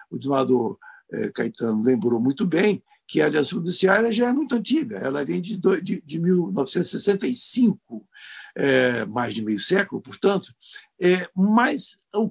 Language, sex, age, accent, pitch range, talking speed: Portuguese, male, 60-79, Brazilian, 140-220 Hz, 120 wpm